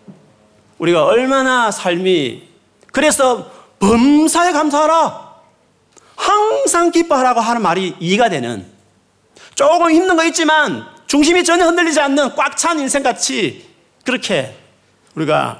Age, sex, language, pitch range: 40-59, male, Korean, 185-310 Hz